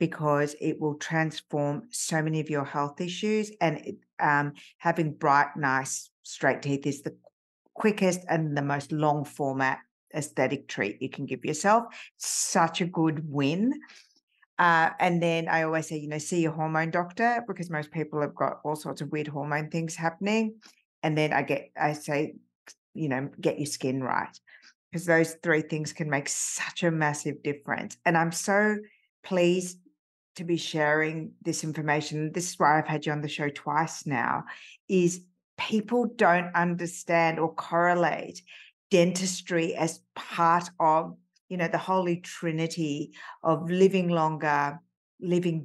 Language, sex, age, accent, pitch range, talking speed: English, female, 50-69, Australian, 150-175 Hz, 160 wpm